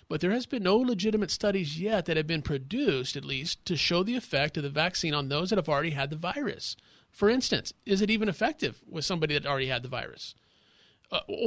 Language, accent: English, American